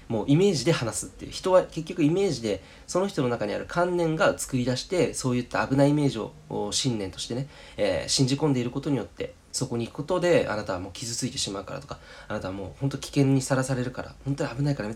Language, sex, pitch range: Japanese, male, 105-150 Hz